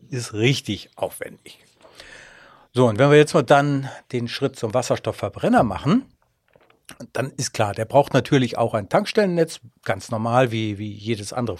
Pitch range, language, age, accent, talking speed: 120-145 Hz, German, 60-79, German, 155 wpm